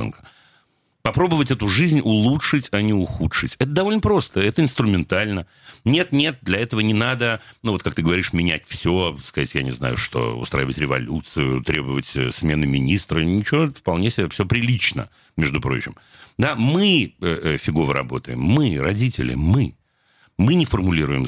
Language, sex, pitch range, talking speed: Russian, male, 80-135 Hz, 150 wpm